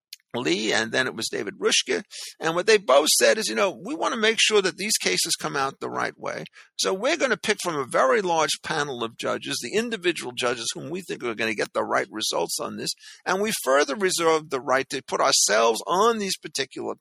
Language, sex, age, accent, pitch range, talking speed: English, male, 50-69, American, 150-235 Hz, 235 wpm